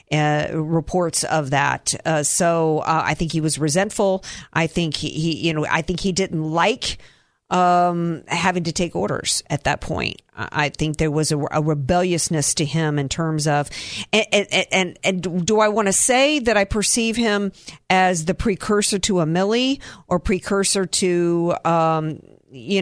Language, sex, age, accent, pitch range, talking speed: English, female, 50-69, American, 155-195 Hz, 180 wpm